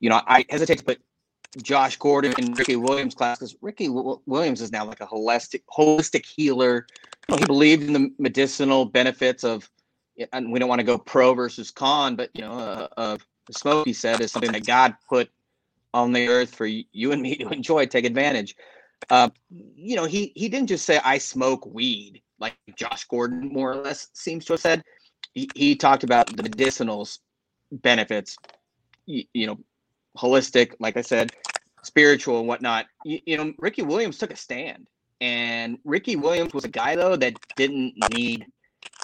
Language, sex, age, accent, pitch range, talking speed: English, male, 30-49, American, 120-145 Hz, 185 wpm